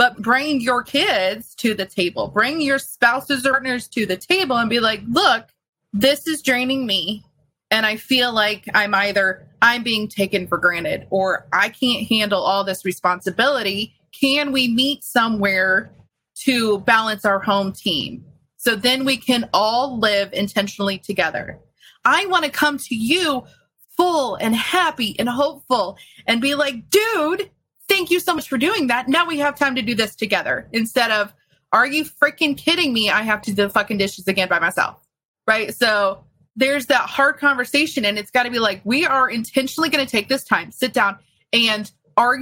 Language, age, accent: English, 30-49, American